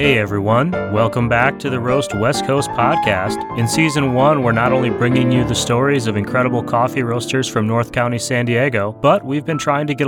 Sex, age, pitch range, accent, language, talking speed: male, 30-49, 115-140 Hz, American, English, 210 wpm